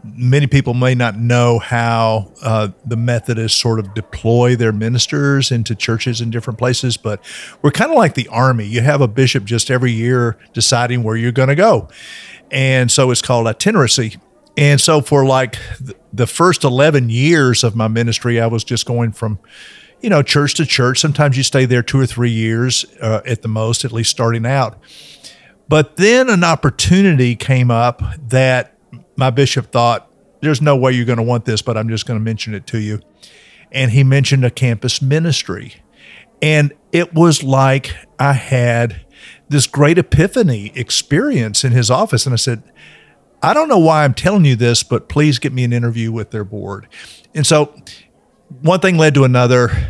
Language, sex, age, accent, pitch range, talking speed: English, male, 50-69, American, 115-140 Hz, 185 wpm